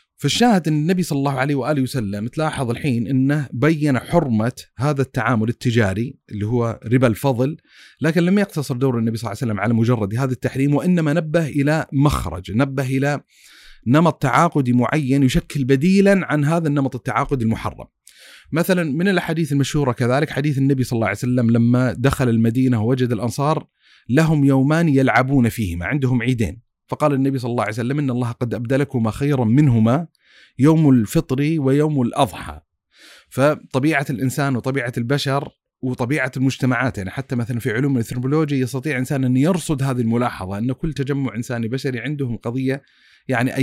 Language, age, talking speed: Arabic, 30-49, 155 wpm